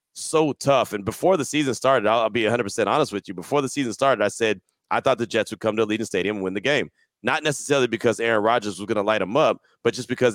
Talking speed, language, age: 280 wpm, English, 30-49